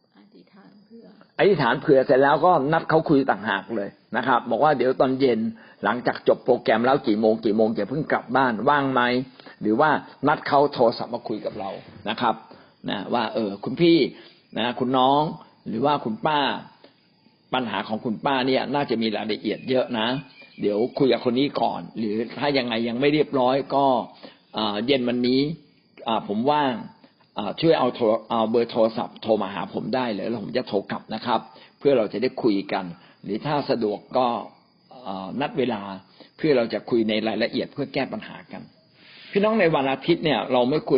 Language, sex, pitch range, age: Thai, male, 115-145 Hz, 60-79